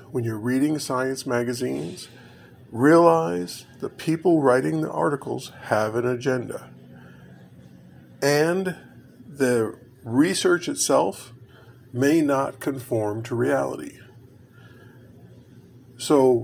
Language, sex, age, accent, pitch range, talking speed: English, male, 50-69, American, 120-140 Hz, 90 wpm